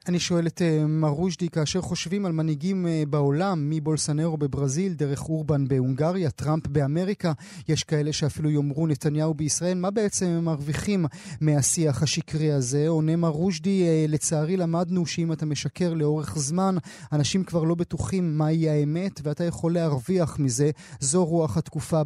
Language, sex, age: Hebrew, male, 30-49